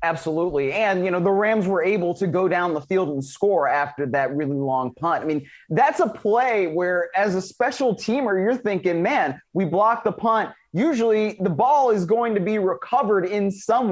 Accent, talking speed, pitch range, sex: American, 205 wpm, 160-205 Hz, male